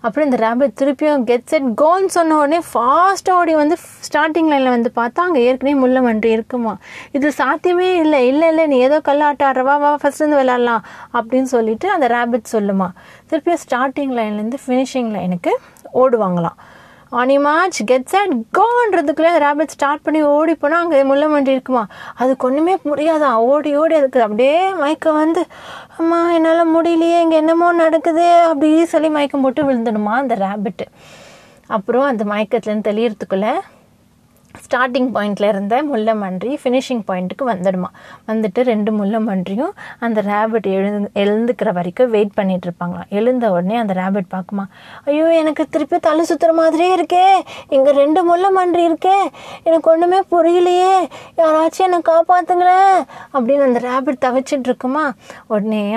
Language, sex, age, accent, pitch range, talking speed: Tamil, female, 20-39, native, 220-320 Hz, 135 wpm